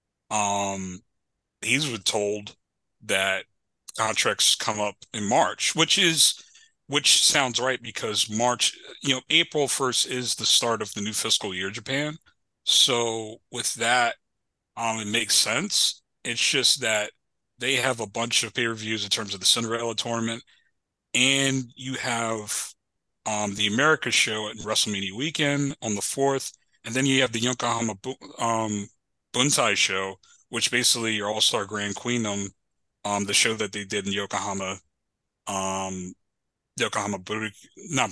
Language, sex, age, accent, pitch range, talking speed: English, male, 30-49, American, 105-125 Hz, 145 wpm